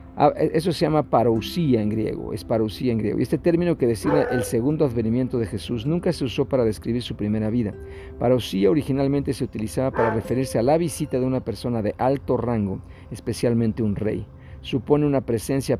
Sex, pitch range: male, 105-135 Hz